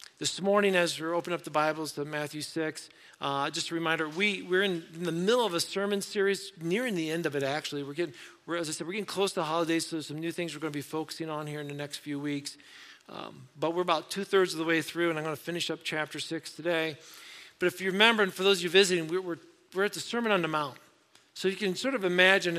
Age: 50-69